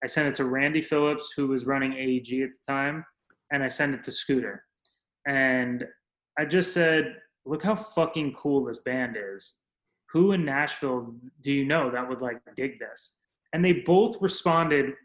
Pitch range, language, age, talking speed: 130-150 Hz, English, 20-39, 180 wpm